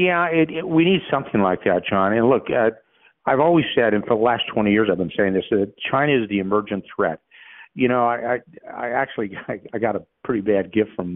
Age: 50-69